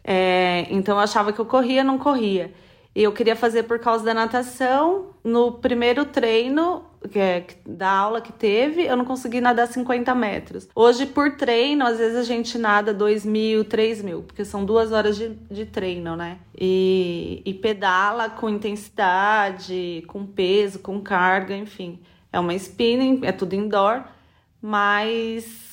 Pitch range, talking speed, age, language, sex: 190-230 Hz, 155 wpm, 30-49, Portuguese, female